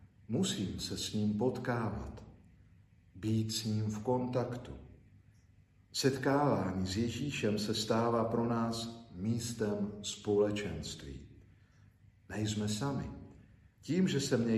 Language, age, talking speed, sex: Slovak, 50-69, 105 wpm, male